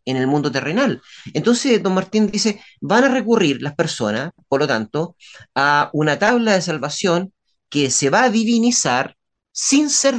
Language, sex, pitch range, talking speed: Spanish, male, 135-190 Hz, 165 wpm